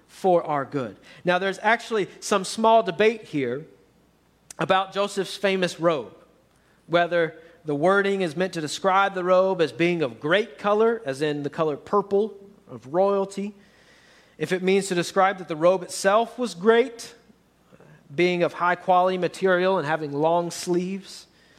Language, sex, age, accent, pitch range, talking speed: English, male, 40-59, American, 160-210 Hz, 150 wpm